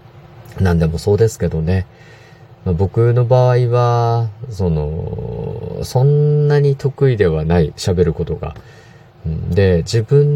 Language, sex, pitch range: Japanese, male, 85-120 Hz